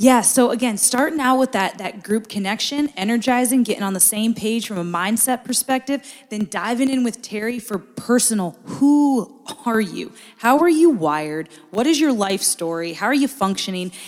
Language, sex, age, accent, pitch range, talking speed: English, female, 20-39, American, 195-240 Hz, 185 wpm